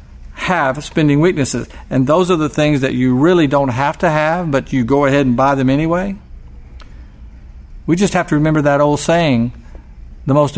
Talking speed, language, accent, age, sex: 185 wpm, English, American, 50-69, male